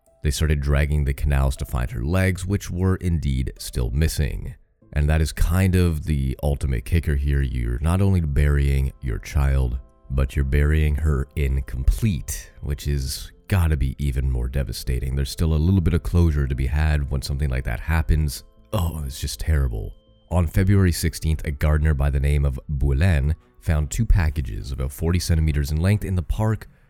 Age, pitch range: 30-49, 70-85 Hz